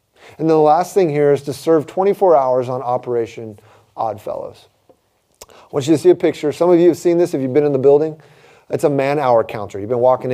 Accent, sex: American, male